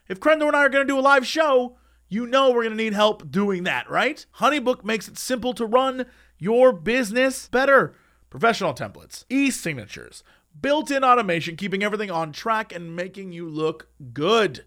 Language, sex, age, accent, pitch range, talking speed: English, male, 30-49, American, 180-255 Hz, 180 wpm